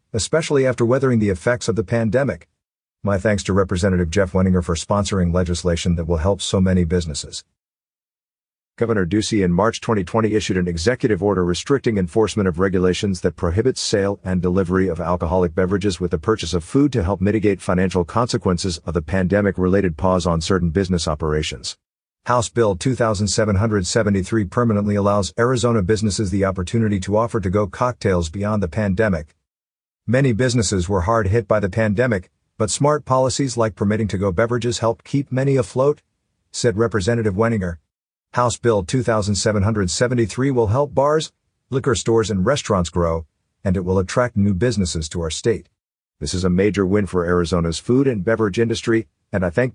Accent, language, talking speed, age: American, English, 165 wpm, 50-69